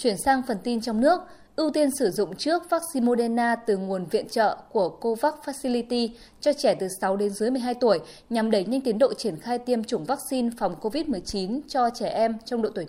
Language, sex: Vietnamese, female